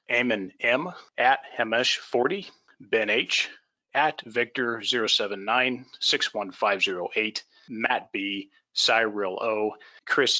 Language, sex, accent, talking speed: English, male, American, 80 wpm